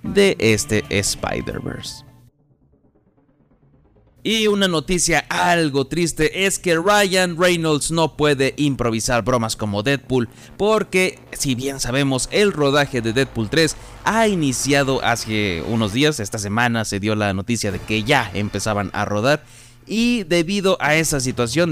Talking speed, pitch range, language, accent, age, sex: 135 wpm, 115-165 Hz, Spanish, Mexican, 30-49, male